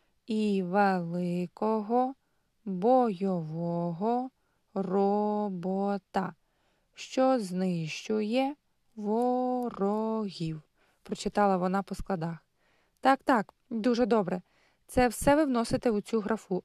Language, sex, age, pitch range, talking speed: Ukrainian, female, 20-39, 195-245 Hz, 80 wpm